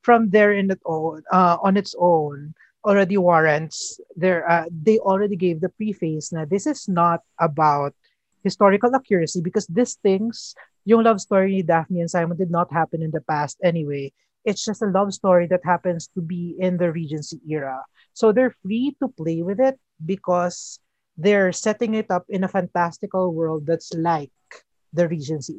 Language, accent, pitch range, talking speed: Filipino, native, 165-210 Hz, 170 wpm